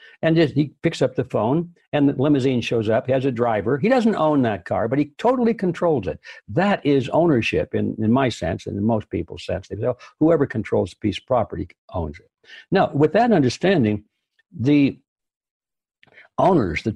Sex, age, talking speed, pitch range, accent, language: male, 60-79, 185 wpm, 110-155 Hz, American, English